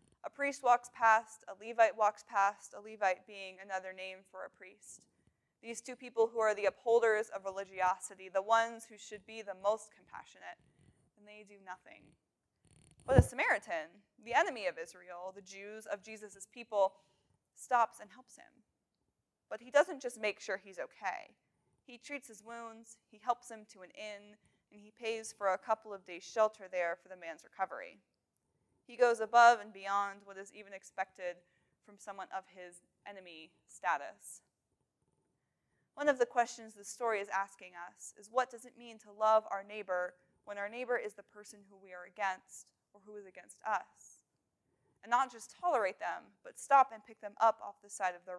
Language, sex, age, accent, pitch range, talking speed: English, female, 20-39, American, 195-235 Hz, 185 wpm